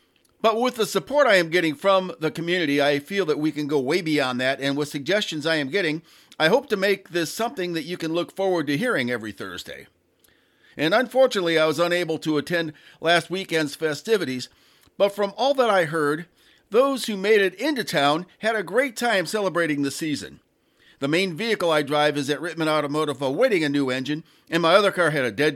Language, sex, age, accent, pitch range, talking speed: English, male, 50-69, American, 145-200 Hz, 210 wpm